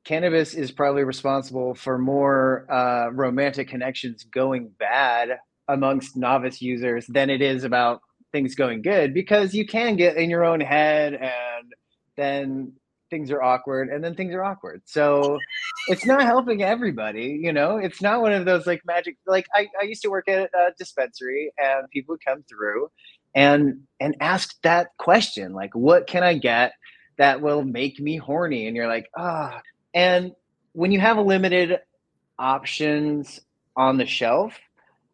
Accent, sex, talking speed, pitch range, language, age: American, male, 165 wpm, 125-165 Hz, English, 30-49